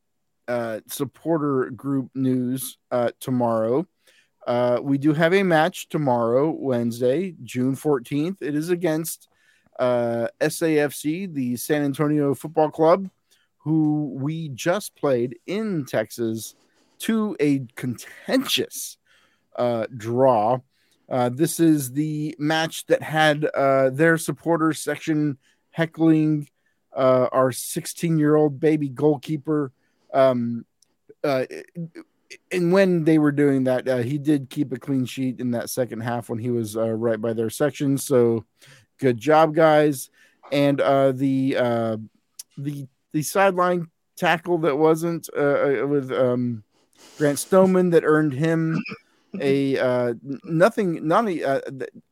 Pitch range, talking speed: 125-160 Hz, 130 wpm